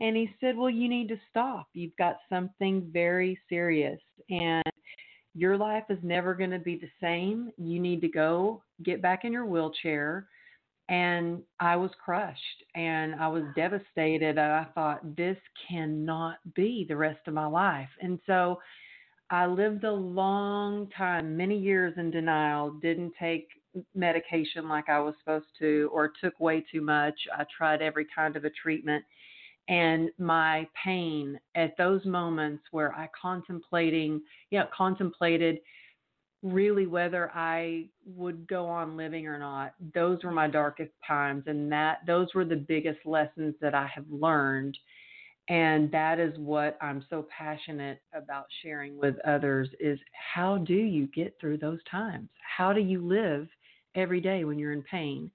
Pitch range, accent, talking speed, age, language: 155-185 Hz, American, 160 wpm, 40-59, English